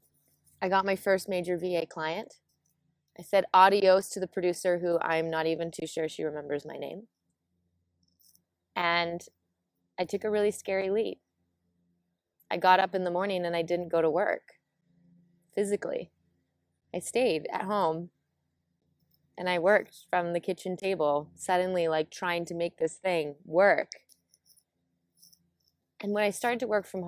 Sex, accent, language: female, American, English